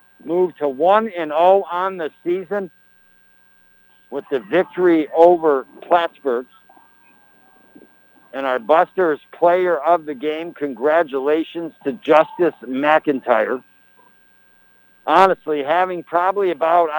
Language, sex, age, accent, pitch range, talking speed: English, male, 60-79, American, 145-175 Hz, 100 wpm